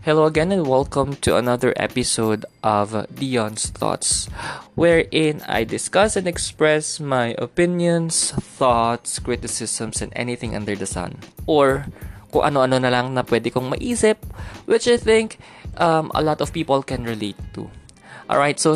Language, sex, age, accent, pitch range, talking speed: Filipino, male, 20-39, native, 110-140 Hz, 145 wpm